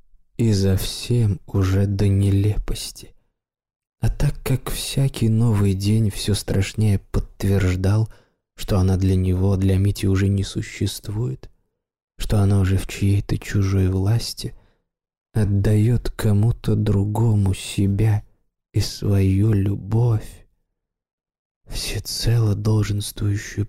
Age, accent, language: 20-39, native, Russian